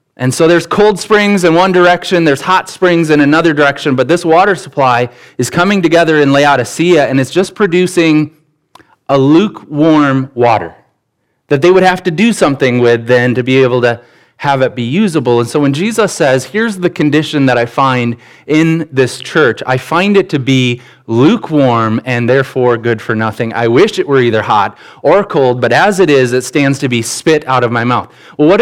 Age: 20-39